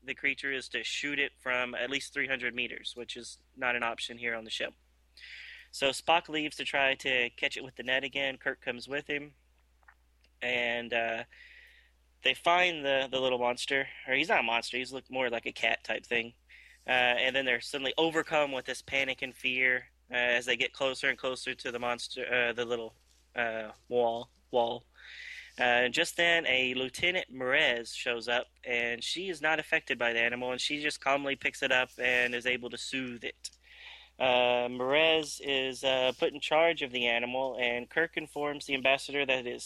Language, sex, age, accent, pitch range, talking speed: English, male, 20-39, American, 120-140 Hz, 200 wpm